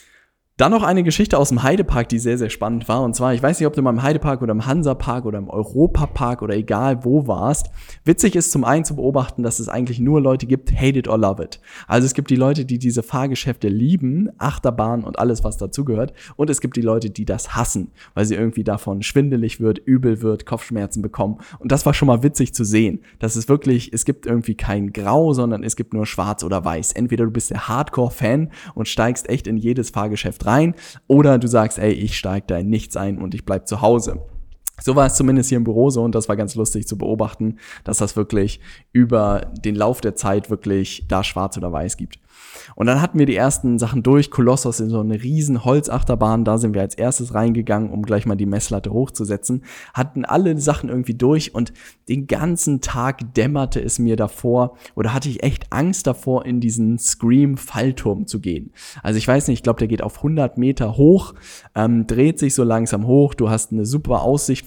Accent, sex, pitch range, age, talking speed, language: German, male, 110-130 Hz, 10-29, 215 wpm, German